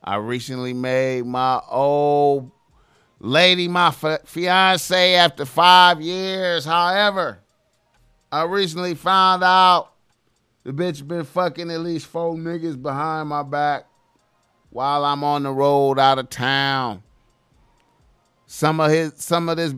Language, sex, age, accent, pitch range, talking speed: English, male, 30-49, American, 145-175 Hz, 125 wpm